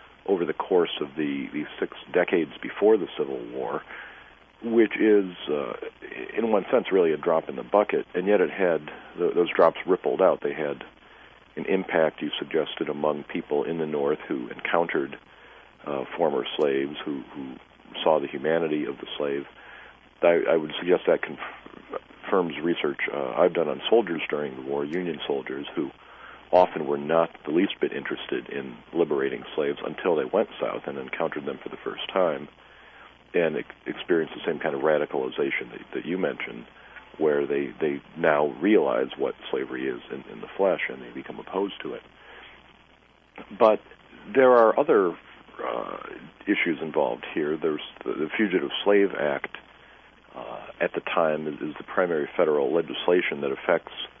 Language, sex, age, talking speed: English, male, 50-69, 165 wpm